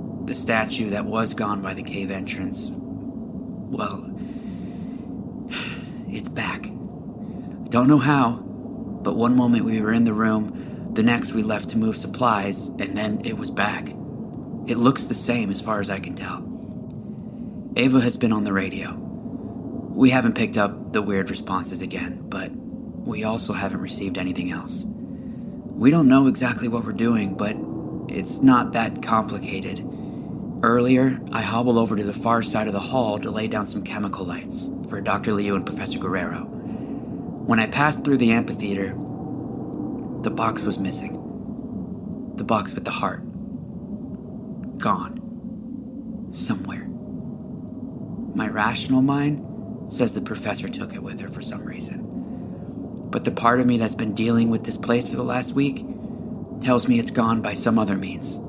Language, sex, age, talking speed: English, male, 30-49, 160 wpm